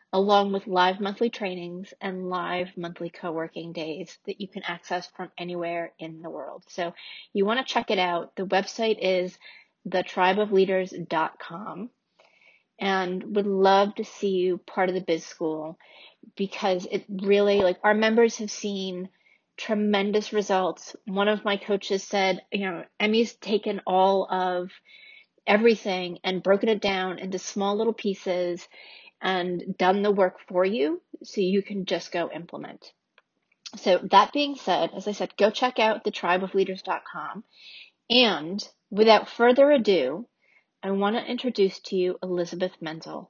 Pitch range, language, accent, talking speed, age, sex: 185-215 Hz, English, American, 150 wpm, 30-49, female